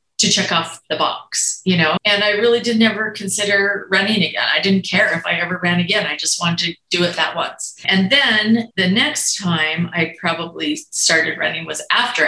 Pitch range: 170-210 Hz